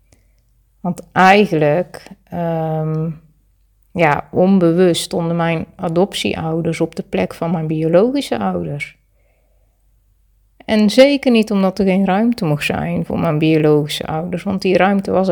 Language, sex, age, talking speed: Dutch, female, 30-49, 120 wpm